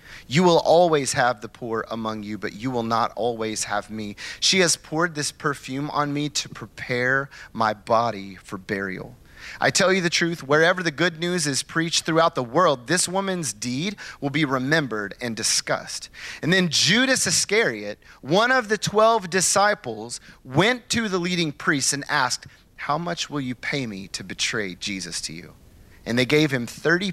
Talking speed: 180 wpm